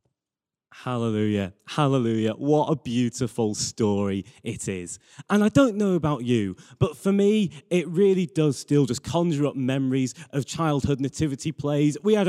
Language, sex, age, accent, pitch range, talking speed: English, male, 20-39, British, 125-175 Hz, 150 wpm